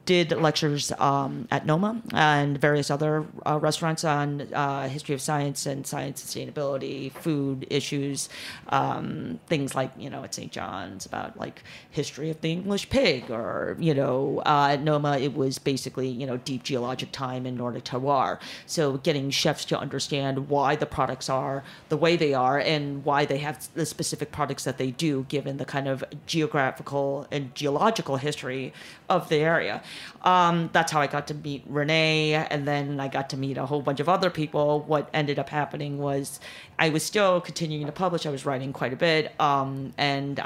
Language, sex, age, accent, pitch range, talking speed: English, female, 30-49, American, 135-155 Hz, 185 wpm